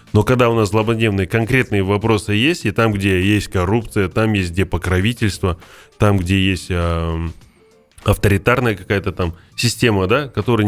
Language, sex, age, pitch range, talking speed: Russian, male, 20-39, 90-115 Hz, 150 wpm